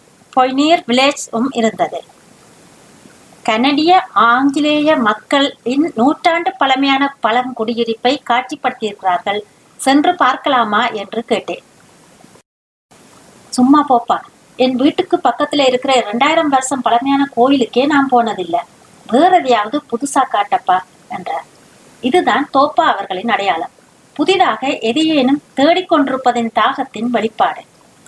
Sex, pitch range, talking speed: female, 235-310 Hz, 85 wpm